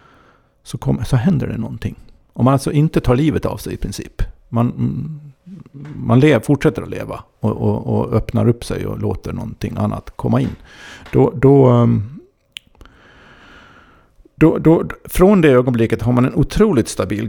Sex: male